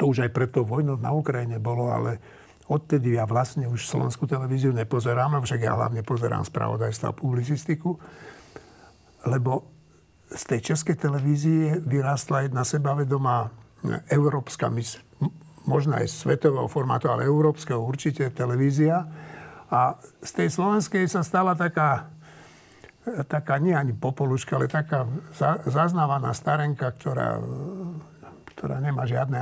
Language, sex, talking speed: Slovak, male, 120 wpm